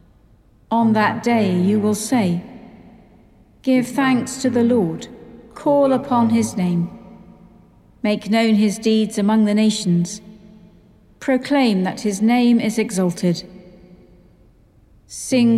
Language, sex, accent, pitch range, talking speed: English, female, British, 185-235 Hz, 110 wpm